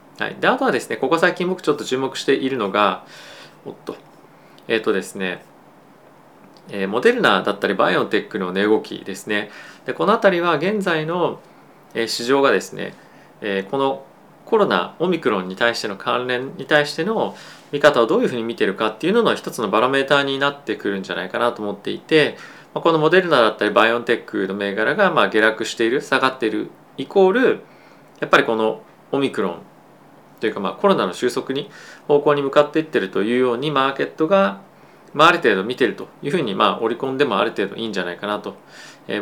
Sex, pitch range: male, 110-155 Hz